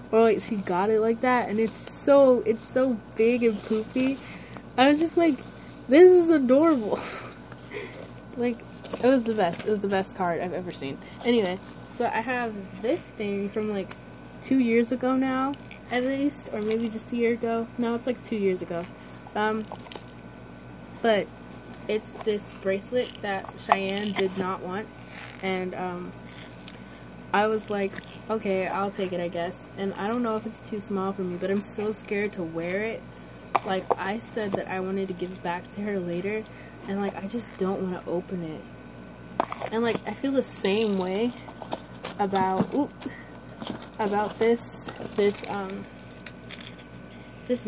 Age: 20-39